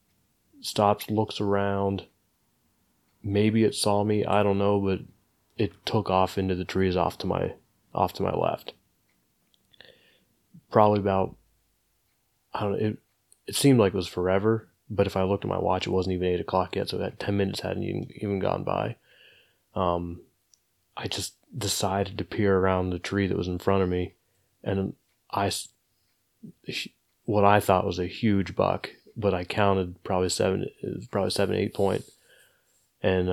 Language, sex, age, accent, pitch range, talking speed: English, male, 20-39, American, 90-100 Hz, 165 wpm